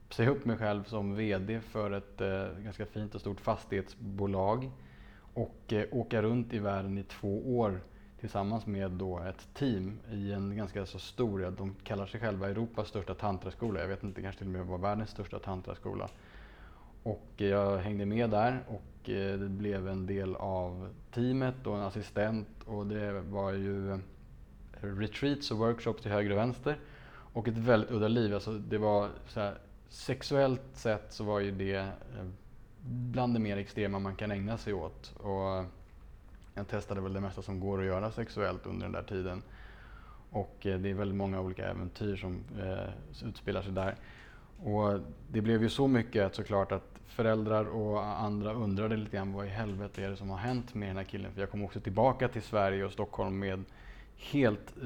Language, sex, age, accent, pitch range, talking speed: English, male, 20-39, Norwegian, 95-110 Hz, 185 wpm